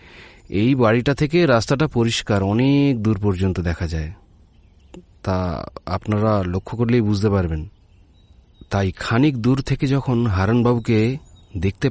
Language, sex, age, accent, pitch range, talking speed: Bengali, male, 40-59, native, 90-125 Hz, 115 wpm